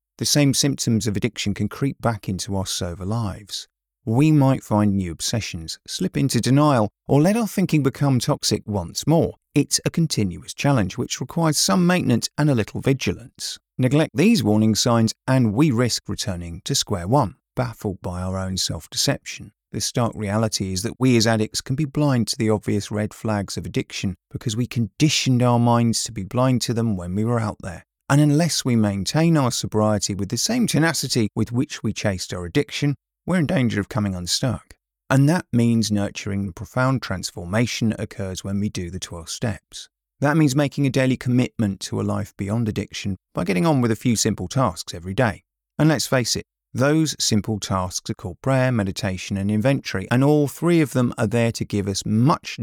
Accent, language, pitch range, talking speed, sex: British, English, 100-135 Hz, 195 wpm, male